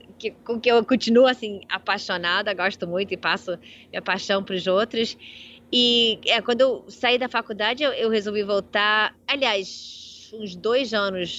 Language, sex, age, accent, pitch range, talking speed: Portuguese, female, 20-39, Brazilian, 195-230 Hz, 165 wpm